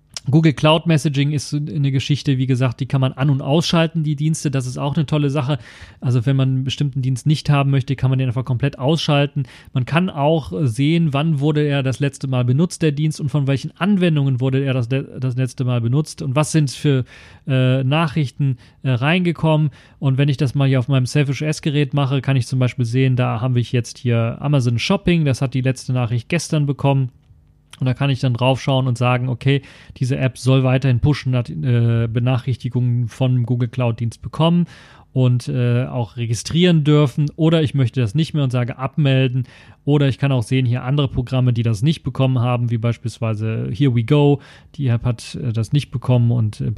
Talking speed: 210 wpm